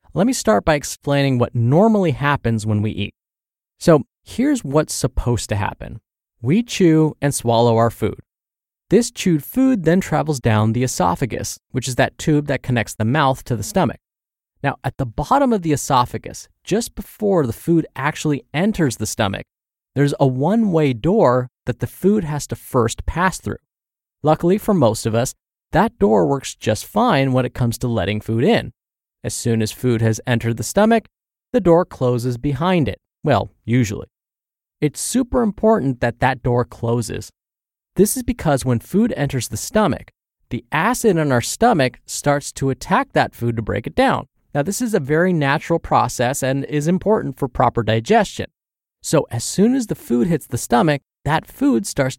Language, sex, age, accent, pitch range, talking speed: English, male, 20-39, American, 120-170 Hz, 180 wpm